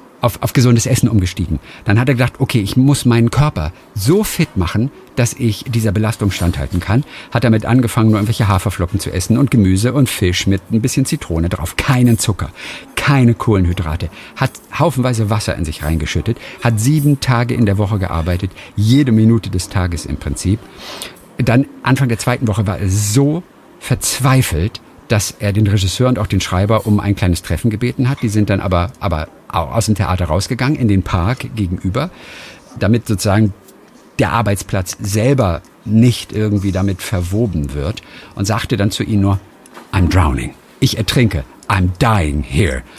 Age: 50-69